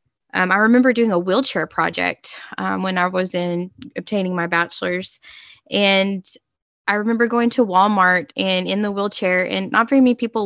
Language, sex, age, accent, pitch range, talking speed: English, female, 10-29, American, 185-205 Hz, 165 wpm